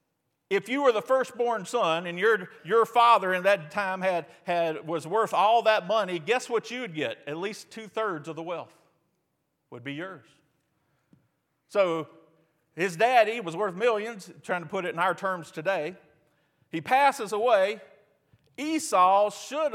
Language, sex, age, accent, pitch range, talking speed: English, male, 50-69, American, 150-210 Hz, 160 wpm